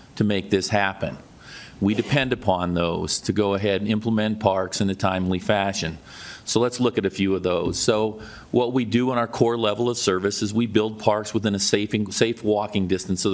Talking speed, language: 210 wpm, English